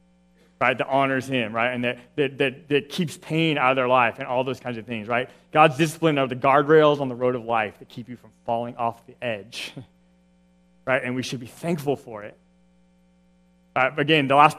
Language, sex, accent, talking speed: English, male, American, 220 wpm